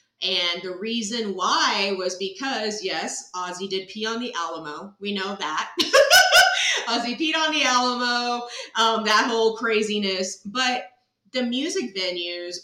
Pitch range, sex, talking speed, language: 180-240 Hz, female, 140 wpm, English